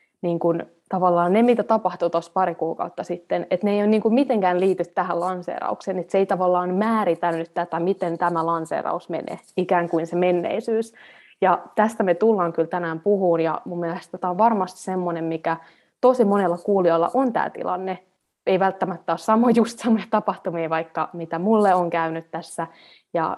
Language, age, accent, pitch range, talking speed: Finnish, 20-39, native, 170-195 Hz, 175 wpm